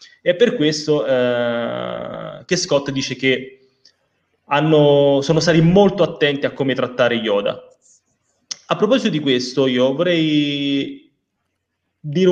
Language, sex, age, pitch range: Italian, male, 20-39, 125-160 Hz